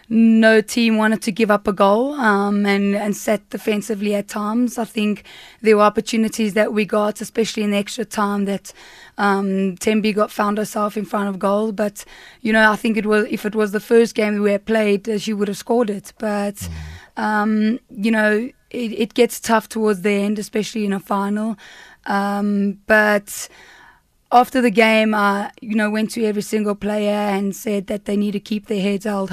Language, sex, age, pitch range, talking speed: English, female, 20-39, 200-220 Hz, 200 wpm